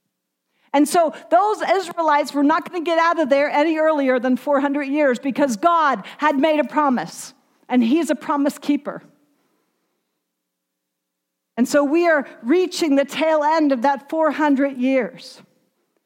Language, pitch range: English, 235-290 Hz